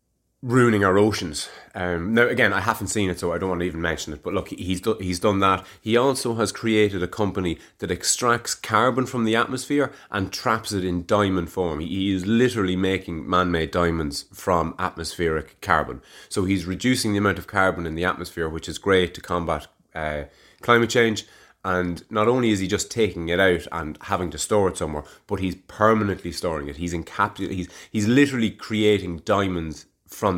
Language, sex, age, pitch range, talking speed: English, male, 30-49, 90-115 Hz, 195 wpm